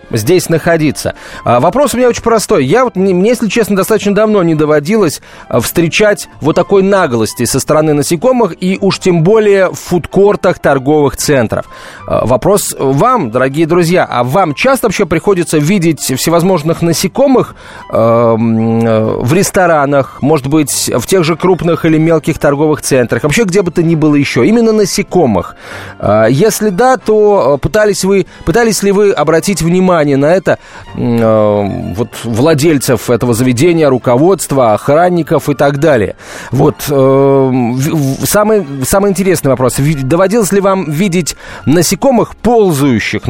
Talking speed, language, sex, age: 130 wpm, Russian, male, 30-49